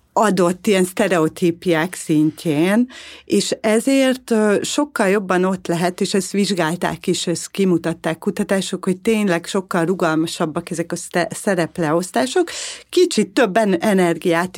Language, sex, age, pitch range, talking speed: Hungarian, female, 40-59, 165-205 Hz, 110 wpm